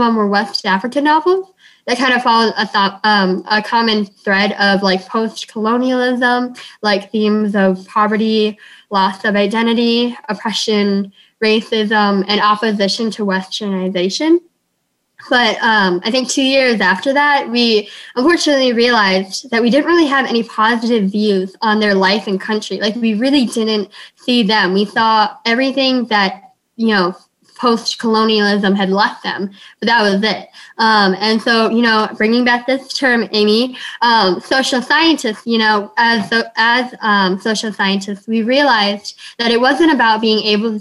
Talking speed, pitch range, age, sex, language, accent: 155 wpm, 205-245 Hz, 10-29, female, English, American